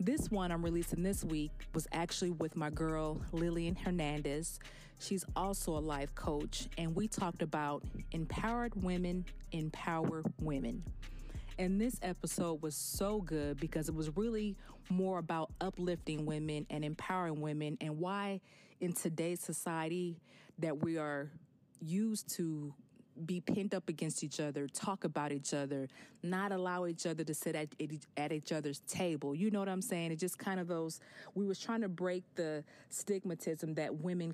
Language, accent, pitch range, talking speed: English, American, 150-180 Hz, 165 wpm